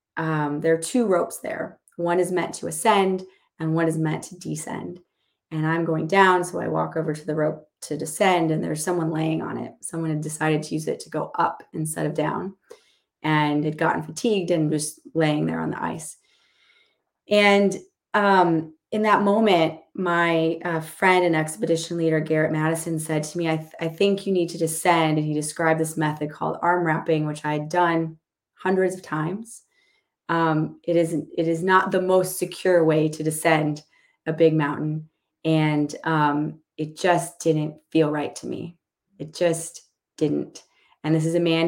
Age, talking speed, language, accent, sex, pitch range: 30-49, 185 wpm, English, American, female, 155-175 Hz